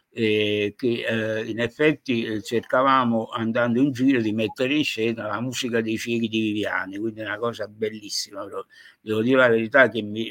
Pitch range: 105-125 Hz